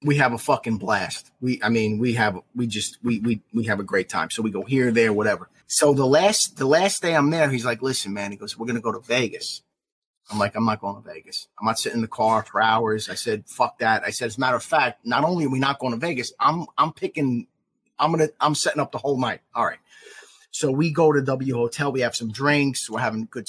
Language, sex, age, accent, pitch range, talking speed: English, male, 30-49, American, 115-140 Hz, 275 wpm